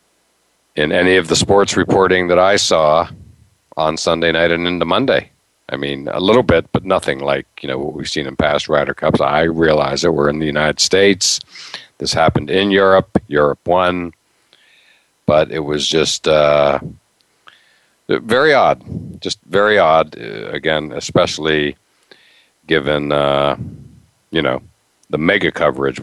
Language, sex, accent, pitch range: English, male, American, 70-85 Hz